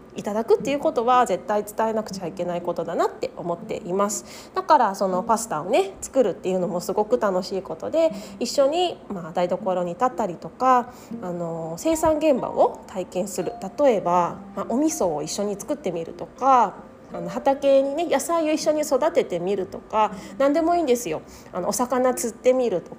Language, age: Japanese, 20-39